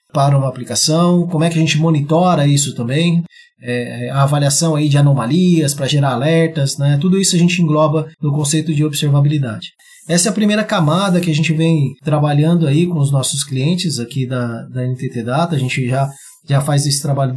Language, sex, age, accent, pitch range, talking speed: Portuguese, male, 20-39, Brazilian, 140-175 Hz, 185 wpm